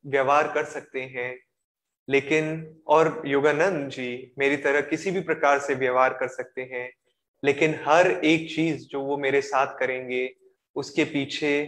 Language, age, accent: Hindi, 20-39, native